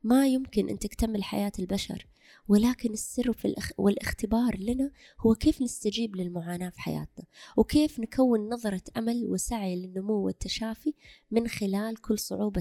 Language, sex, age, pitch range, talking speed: Arabic, female, 20-39, 190-240 Hz, 130 wpm